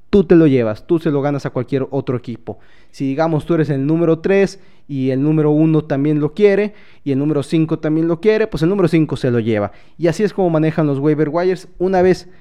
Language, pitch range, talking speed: Spanish, 135-165 Hz, 240 wpm